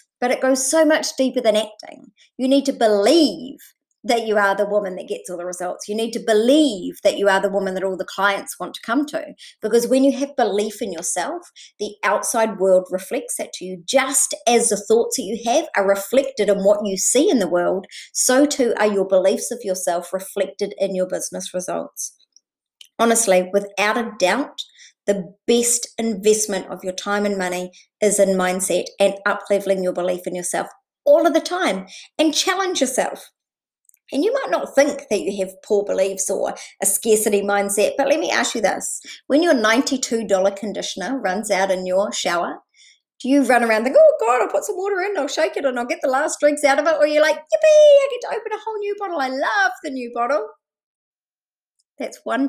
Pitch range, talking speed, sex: 195-285 Hz, 205 wpm, male